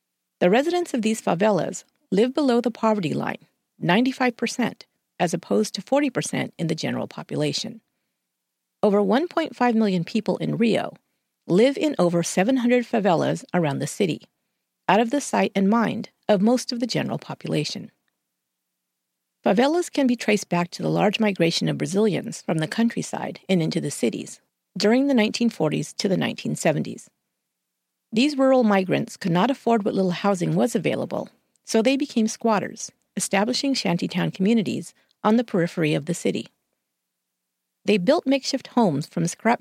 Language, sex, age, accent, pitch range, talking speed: English, female, 40-59, American, 170-245 Hz, 150 wpm